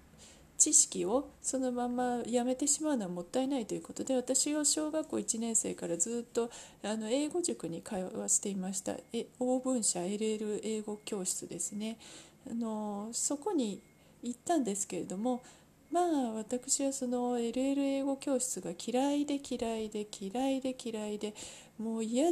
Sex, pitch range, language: female, 185-255 Hz, Japanese